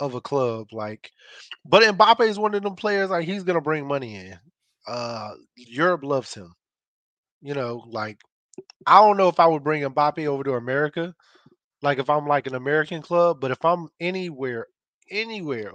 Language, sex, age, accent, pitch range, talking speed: English, male, 20-39, American, 120-155 Hz, 185 wpm